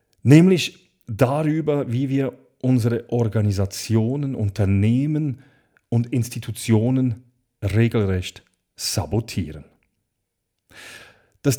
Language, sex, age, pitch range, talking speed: German, male, 40-59, 110-140 Hz, 60 wpm